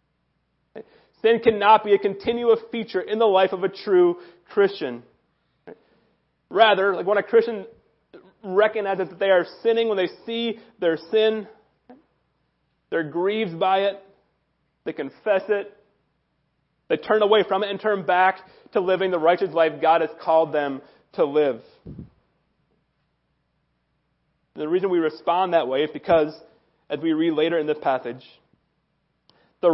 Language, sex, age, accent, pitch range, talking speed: English, male, 30-49, American, 175-230 Hz, 140 wpm